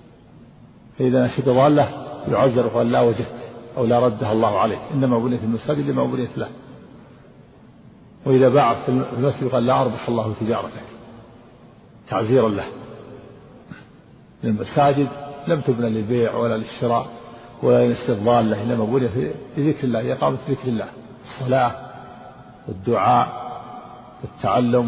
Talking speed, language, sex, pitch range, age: 115 wpm, Arabic, male, 115-130 Hz, 50-69